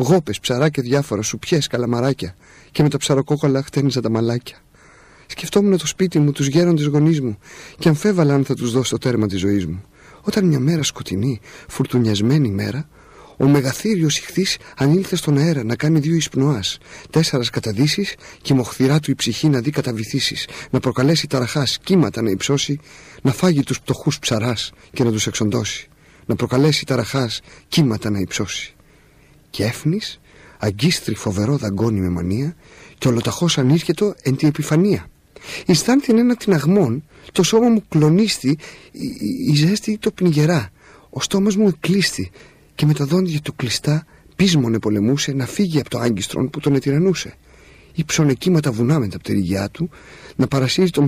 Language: Greek